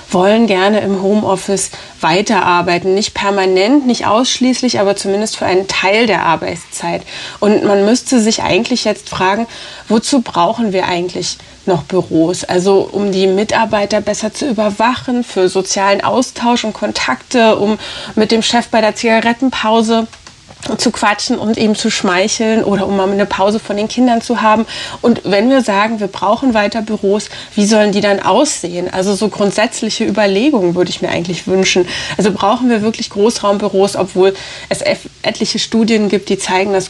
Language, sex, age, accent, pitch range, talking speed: German, female, 30-49, German, 190-225 Hz, 160 wpm